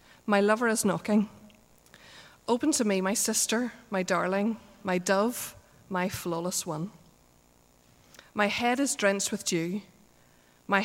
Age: 30-49